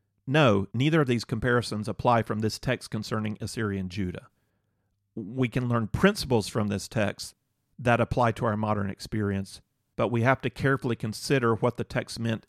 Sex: male